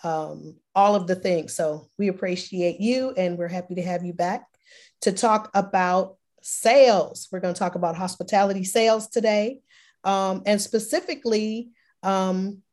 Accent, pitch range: American, 180-220 Hz